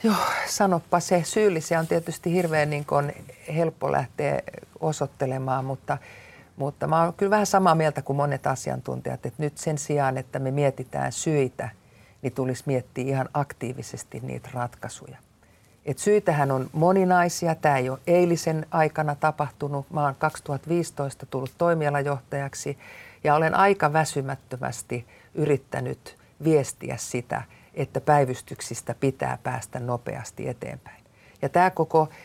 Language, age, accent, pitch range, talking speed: Finnish, 50-69, native, 130-160 Hz, 125 wpm